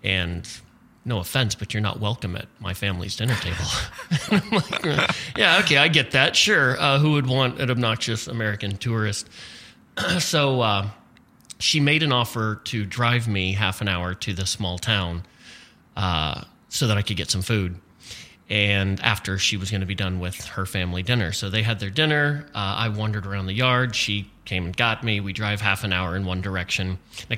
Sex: male